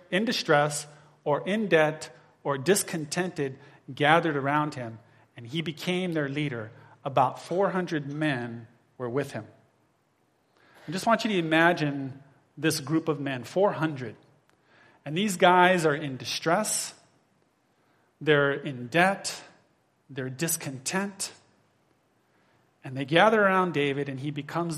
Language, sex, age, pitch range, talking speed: English, male, 30-49, 145-175 Hz, 125 wpm